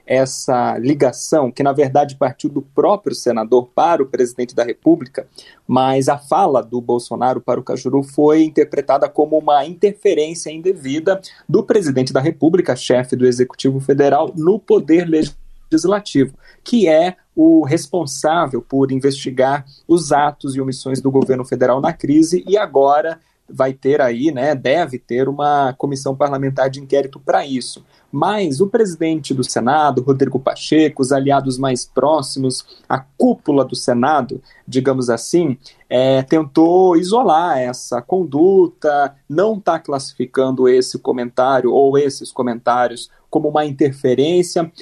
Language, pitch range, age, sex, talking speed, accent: Portuguese, 130-160 Hz, 30-49, male, 135 wpm, Brazilian